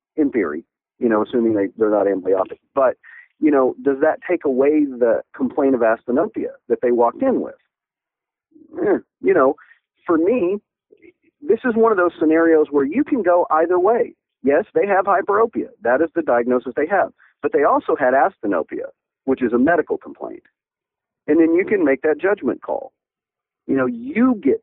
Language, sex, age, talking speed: English, male, 40-59, 180 wpm